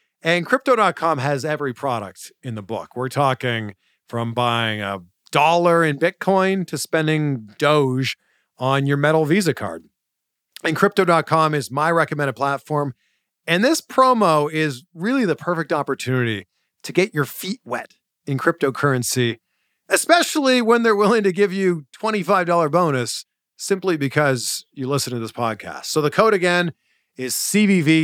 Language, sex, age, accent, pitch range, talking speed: English, male, 40-59, American, 130-190 Hz, 145 wpm